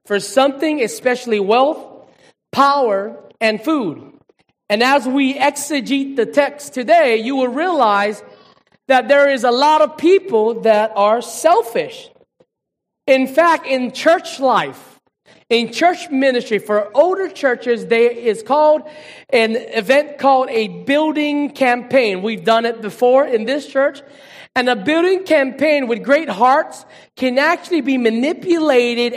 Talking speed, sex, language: 135 wpm, male, English